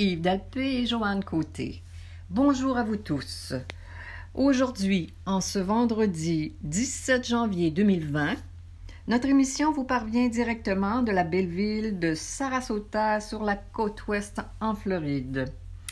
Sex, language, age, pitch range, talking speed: female, French, 50-69, 145-215 Hz, 125 wpm